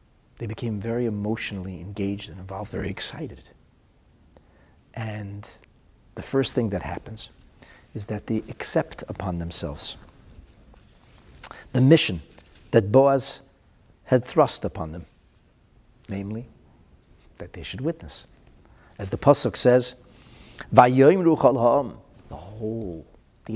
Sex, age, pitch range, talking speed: male, 50-69, 100-130 Hz, 105 wpm